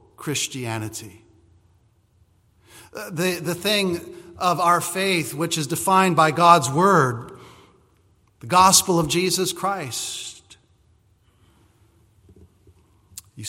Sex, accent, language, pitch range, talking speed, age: male, American, English, 115-180 Hz, 85 wpm, 40-59